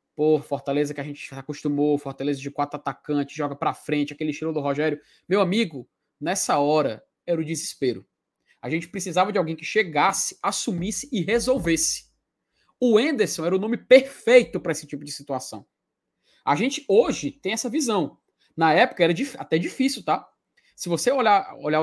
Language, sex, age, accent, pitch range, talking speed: Portuguese, male, 20-39, Brazilian, 155-230 Hz, 175 wpm